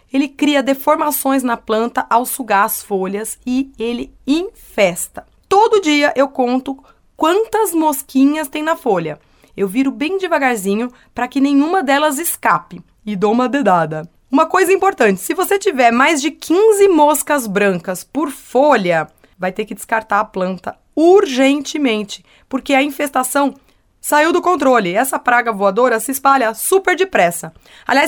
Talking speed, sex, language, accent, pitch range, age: 145 wpm, female, Portuguese, Brazilian, 215-295 Hz, 20-39